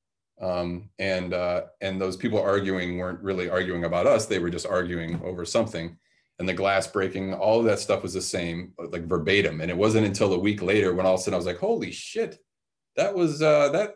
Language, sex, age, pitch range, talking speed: Greek, male, 30-49, 85-105 Hz, 225 wpm